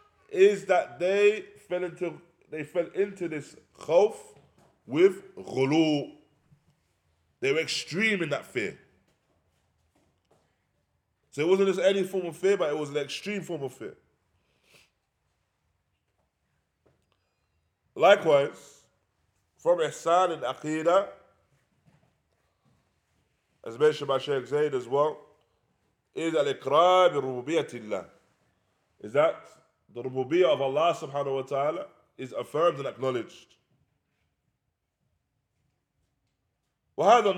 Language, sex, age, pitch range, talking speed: English, male, 20-39, 135-200 Hz, 100 wpm